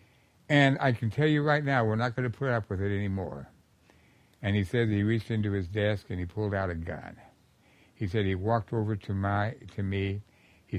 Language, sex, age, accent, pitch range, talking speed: English, male, 60-79, American, 95-155 Hz, 215 wpm